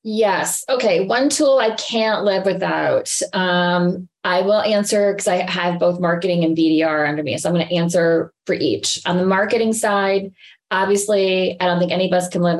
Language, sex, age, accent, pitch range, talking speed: English, female, 20-39, American, 165-205 Hz, 195 wpm